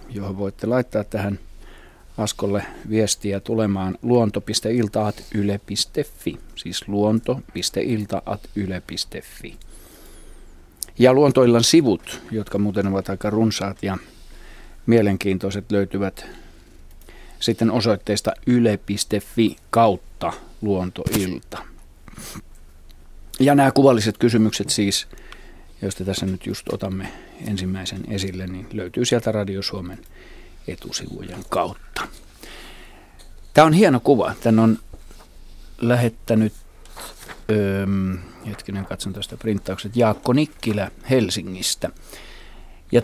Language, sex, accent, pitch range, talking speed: Finnish, male, native, 95-115 Hz, 90 wpm